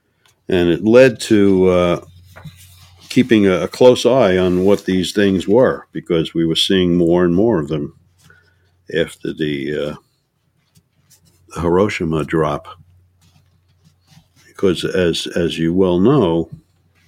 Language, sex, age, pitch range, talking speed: English, male, 60-79, 85-100 Hz, 125 wpm